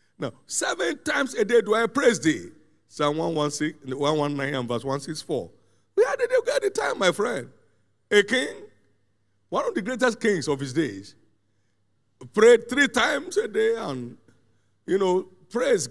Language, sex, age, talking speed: English, male, 50-69, 155 wpm